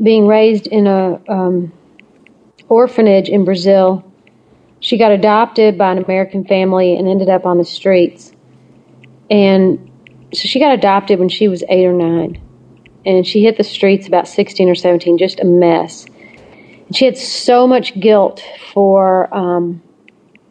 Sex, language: female, English